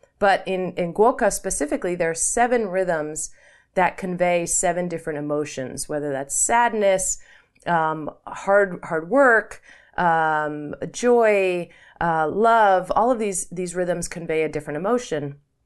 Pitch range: 155-190 Hz